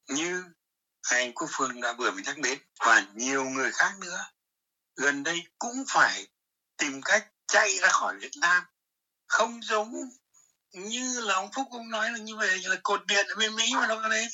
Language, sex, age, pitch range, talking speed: Vietnamese, male, 60-79, 185-240 Hz, 195 wpm